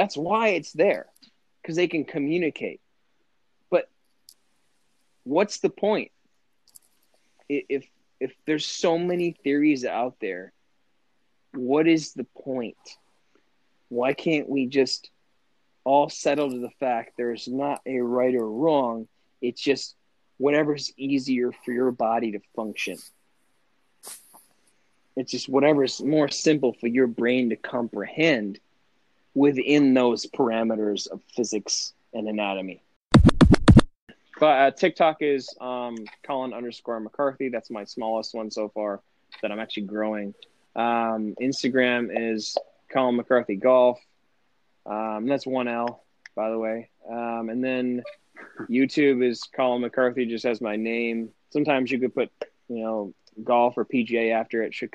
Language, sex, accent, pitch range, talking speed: English, male, American, 110-135 Hz, 130 wpm